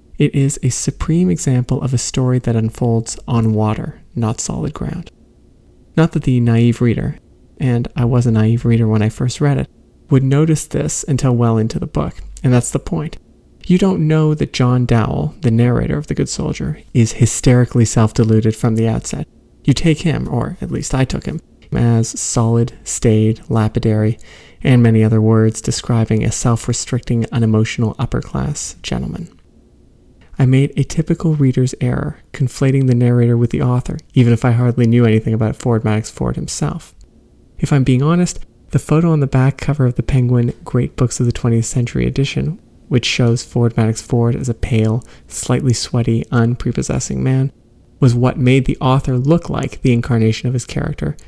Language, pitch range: English, 115-135 Hz